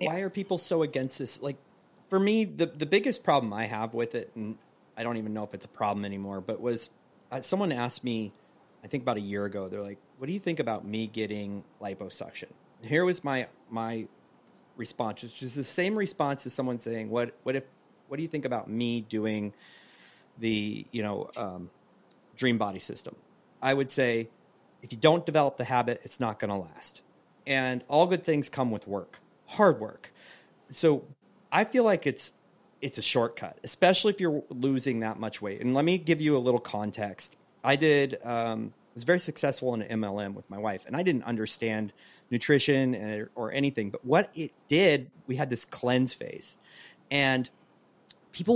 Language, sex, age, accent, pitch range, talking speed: English, male, 30-49, American, 110-155 Hz, 195 wpm